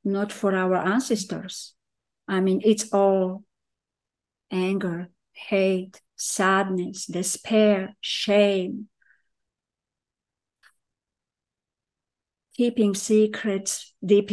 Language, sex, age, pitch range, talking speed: English, female, 50-69, 195-230 Hz, 65 wpm